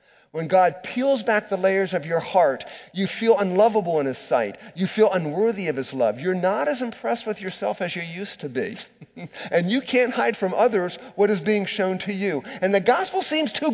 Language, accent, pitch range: English, American, 130-210 Hz